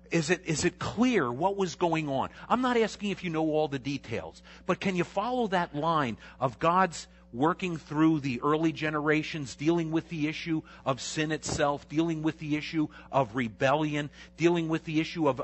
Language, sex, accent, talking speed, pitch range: Italian, male, American, 190 wpm, 130-165 Hz